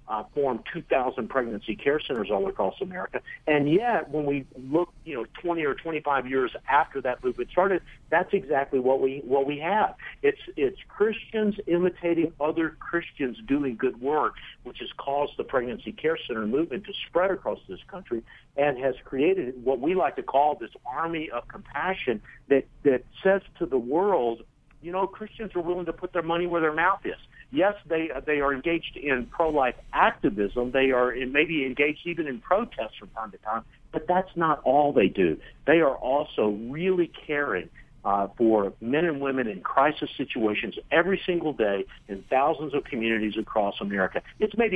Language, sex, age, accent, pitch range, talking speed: English, male, 60-79, American, 130-180 Hz, 180 wpm